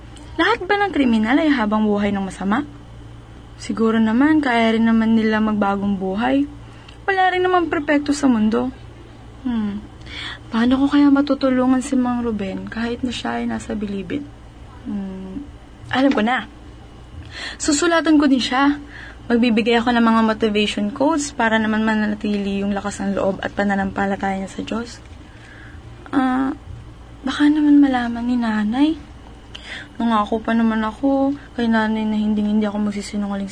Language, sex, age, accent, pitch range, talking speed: English, female, 20-39, Filipino, 210-270 Hz, 140 wpm